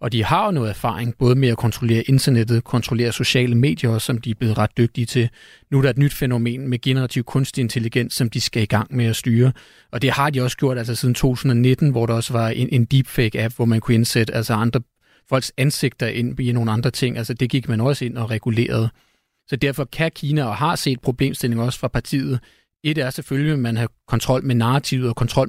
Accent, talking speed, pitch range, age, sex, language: native, 230 wpm, 120-140 Hz, 30-49, male, Danish